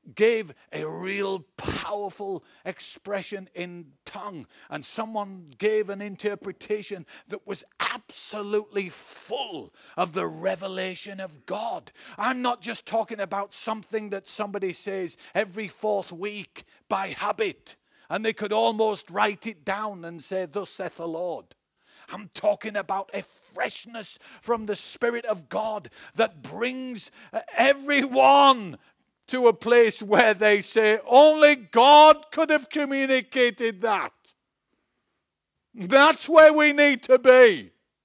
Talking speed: 125 wpm